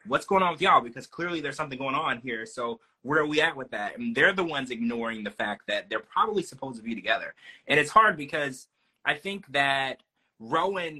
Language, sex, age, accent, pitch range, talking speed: English, male, 20-39, American, 120-180 Hz, 225 wpm